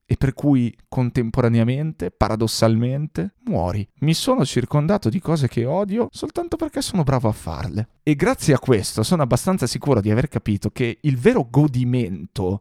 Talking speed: 155 wpm